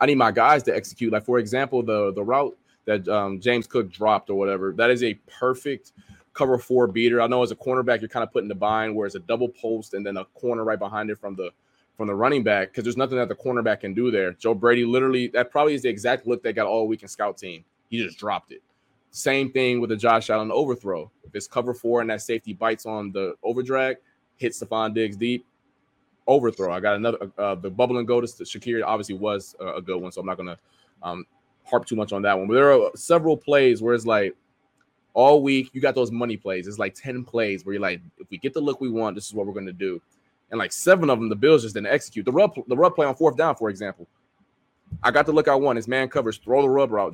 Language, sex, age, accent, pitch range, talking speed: English, male, 20-39, American, 105-125 Hz, 260 wpm